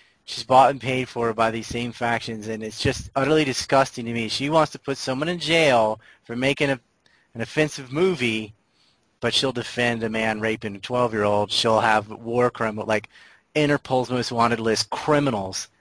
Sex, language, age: male, English, 30-49